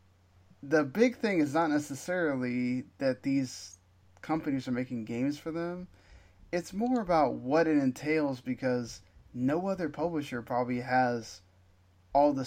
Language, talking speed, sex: English, 135 wpm, male